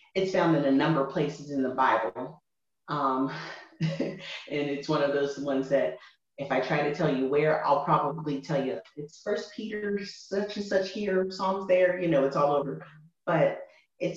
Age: 30-49